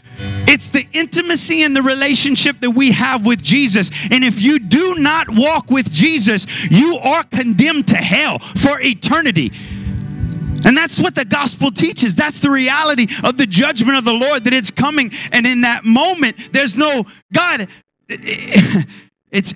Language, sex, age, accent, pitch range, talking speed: English, male, 30-49, American, 205-275 Hz, 160 wpm